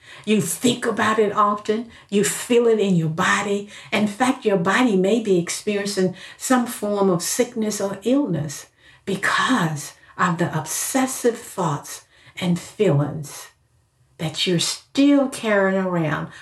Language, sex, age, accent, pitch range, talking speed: English, female, 50-69, American, 170-230 Hz, 130 wpm